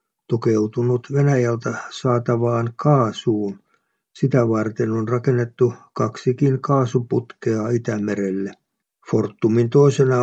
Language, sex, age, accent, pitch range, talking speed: Finnish, male, 50-69, native, 110-130 Hz, 75 wpm